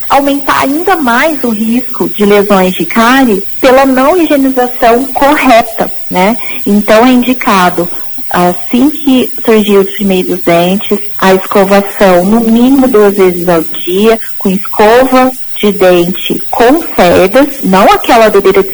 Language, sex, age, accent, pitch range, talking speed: Portuguese, female, 40-59, Brazilian, 205-265 Hz, 130 wpm